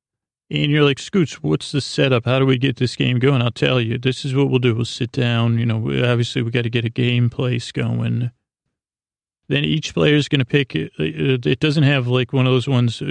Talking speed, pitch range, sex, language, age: 235 wpm, 120-130 Hz, male, English, 30-49